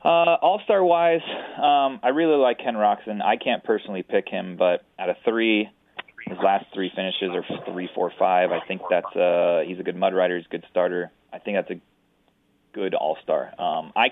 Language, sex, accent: English, male, American